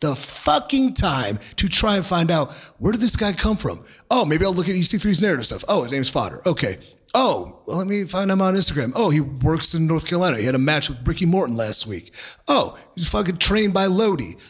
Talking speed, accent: 230 wpm, American